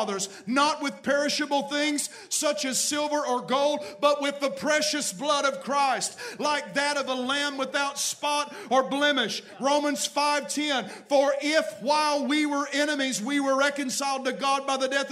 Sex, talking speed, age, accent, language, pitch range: male, 165 wpm, 50-69, American, English, 285-325 Hz